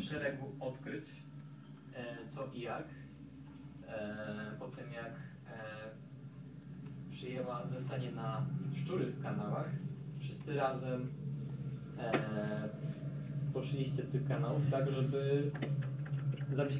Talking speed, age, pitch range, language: 95 wpm, 20-39, 135-145 Hz, Polish